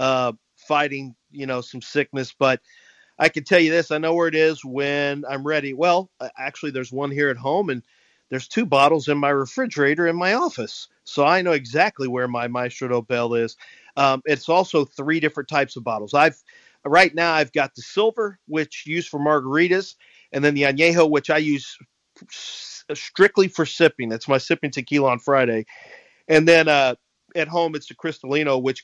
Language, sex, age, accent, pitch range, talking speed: English, male, 40-59, American, 130-160 Hz, 190 wpm